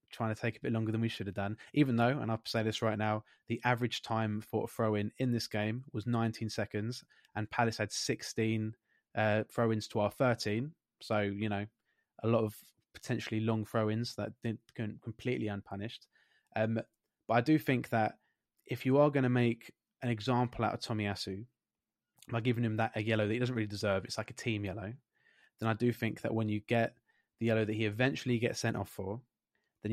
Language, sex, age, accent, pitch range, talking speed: English, male, 20-39, British, 110-125 Hz, 210 wpm